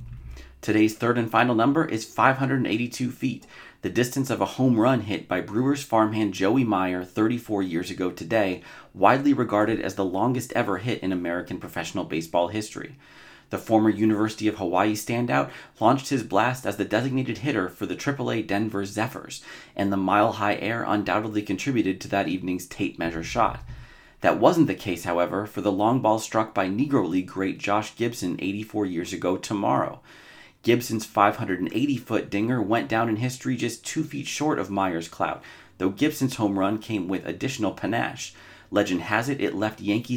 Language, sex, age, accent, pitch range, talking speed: English, male, 30-49, American, 95-120 Hz, 170 wpm